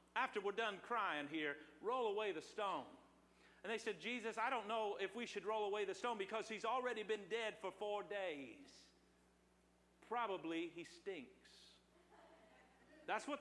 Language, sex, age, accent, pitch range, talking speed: English, male, 50-69, American, 155-220 Hz, 160 wpm